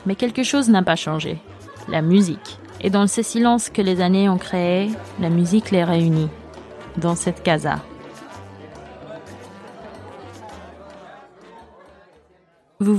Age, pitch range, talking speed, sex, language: 20-39, 180-220 Hz, 115 wpm, female, French